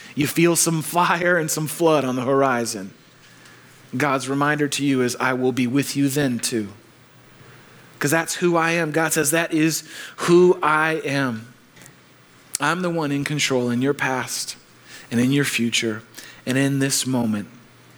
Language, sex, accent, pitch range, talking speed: English, male, American, 135-215 Hz, 165 wpm